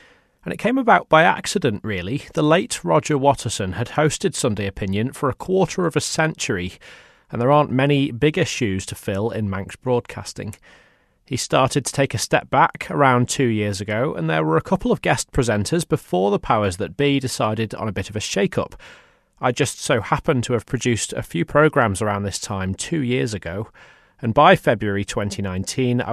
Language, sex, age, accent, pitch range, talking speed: English, male, 30-49, British, 105-150 Hz, 190 wpm